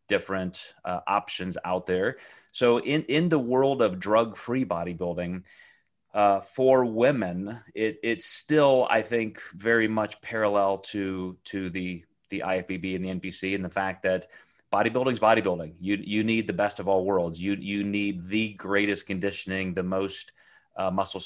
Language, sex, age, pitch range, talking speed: English, male, 30-49, 90-110 Hz, 160 wpm